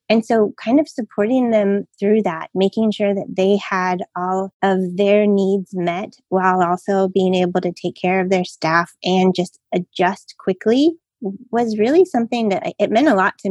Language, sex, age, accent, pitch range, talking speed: English, female, 20-39, American, 180-215 Hz, 185 wpm